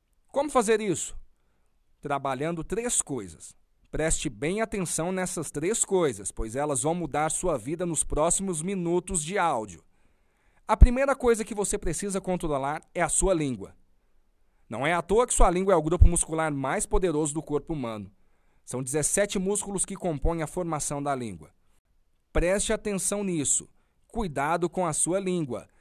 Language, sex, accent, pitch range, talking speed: Portuguese, male, Brazilian, 130-180 Hz, 155 wpm